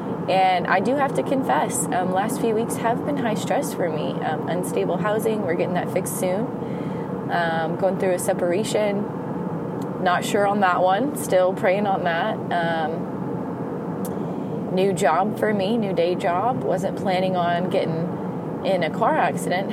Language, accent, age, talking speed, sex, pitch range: English, American, 20-39, 165 wpm, female, 170-195 Hz